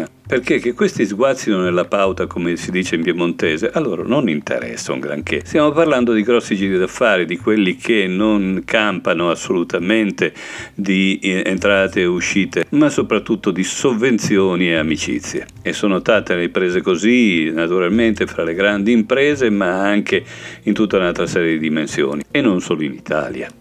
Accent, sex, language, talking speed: native, male, Italian, 160 wpm